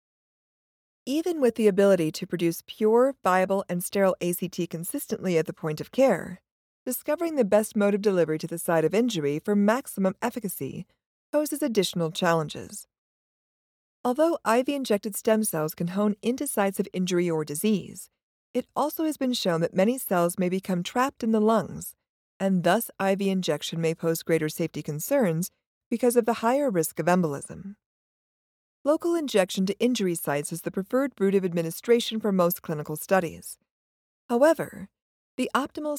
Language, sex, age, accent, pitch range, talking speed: English, female, 40-59, American, 170-235 Hz, 155 wpm